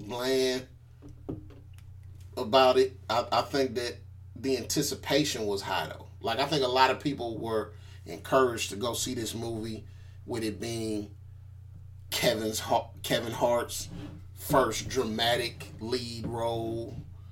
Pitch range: 95-130 Hz